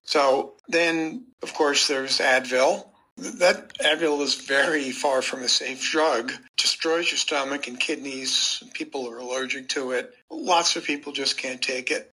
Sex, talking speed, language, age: male, 165 wpm, English, 50-69